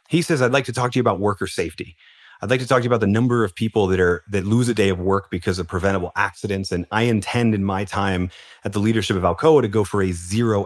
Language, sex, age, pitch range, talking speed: English, male, 30-49, 95-115 Hz, 280 wpm